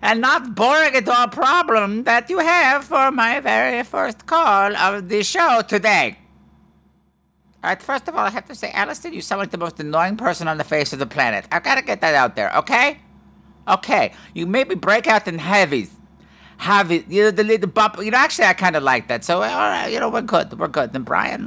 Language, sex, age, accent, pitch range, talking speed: English, male, 50-69, American, 185-280 Hz, 225 wpm